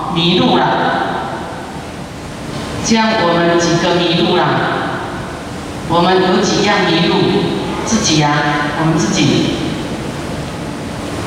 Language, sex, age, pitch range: Chinese, female, 40-59, 170-215 Hz